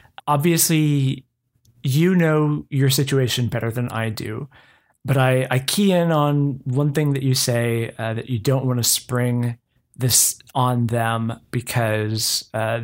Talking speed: 150 wpm